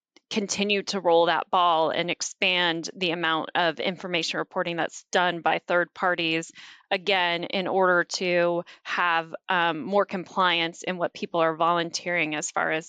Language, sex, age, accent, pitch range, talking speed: English, female, 10-29, American, 170-190 Hz, 155 wpm